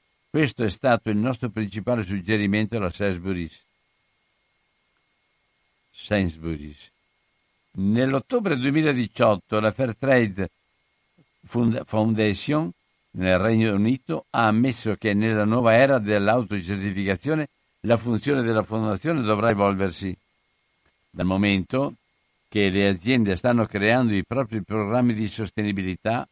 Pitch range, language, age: 95-115 Hz, Italian, 60-79